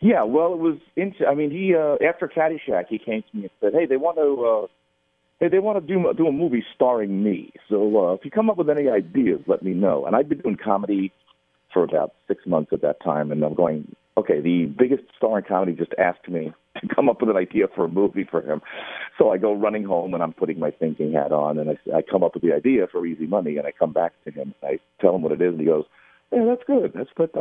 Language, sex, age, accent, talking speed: English, male, 40-59, American, 270 wpm